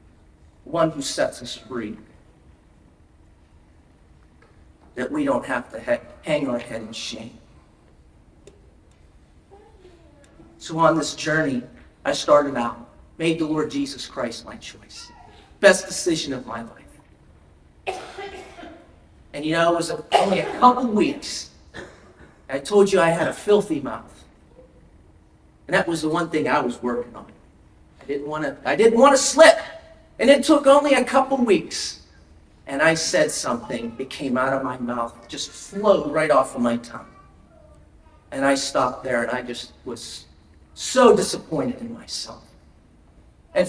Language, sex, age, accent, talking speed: English, male, 40-59, American, 145 wpm